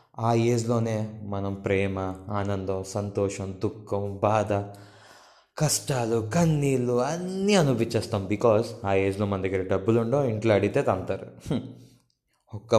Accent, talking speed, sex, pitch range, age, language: native, 110 wpm, male, 105-130 Hz, 20-39, Telugu